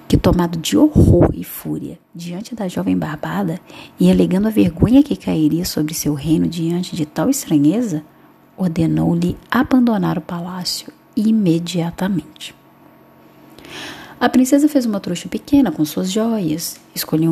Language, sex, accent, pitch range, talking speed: Portuguese, female, Brazilian, 165-245 Hz, 130 wpm